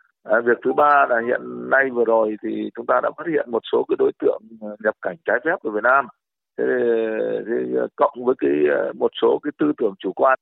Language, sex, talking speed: Vietnamese, male, 225 wpm